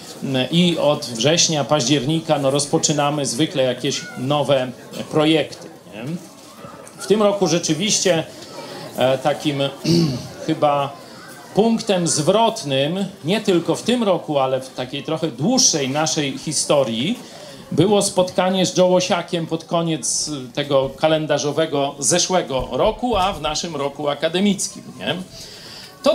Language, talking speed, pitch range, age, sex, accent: Polish, 110 wpm, 145-185 Hz, 40-59, male, native